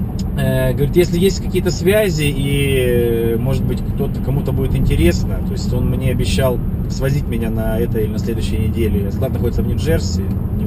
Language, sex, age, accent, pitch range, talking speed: Russian, male, 20-39, native, 95-115 Hz, 170 wpm